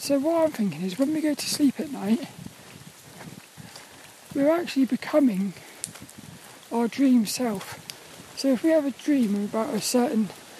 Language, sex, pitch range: English, male, 225-285 Hz